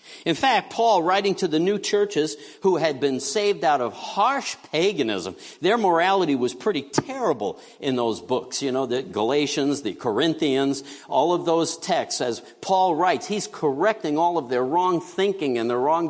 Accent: American